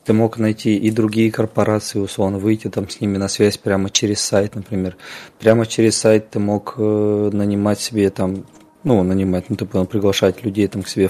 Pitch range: 100-110 Hz